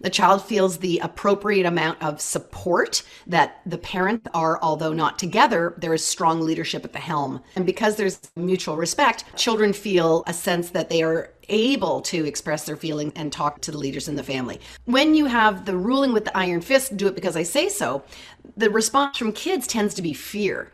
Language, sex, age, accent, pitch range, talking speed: English, female, 40-59, American, 160-200 Hz, 205 wpm